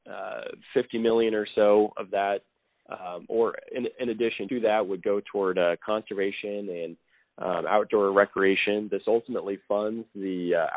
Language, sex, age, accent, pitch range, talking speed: English, male, 30-49, American, 100-110 Hz, 150 wpm